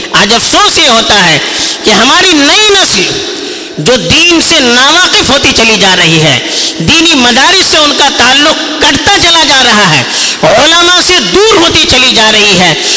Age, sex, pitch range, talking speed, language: 50-69, female, 235-340 Hz, 70 wpm, Urdu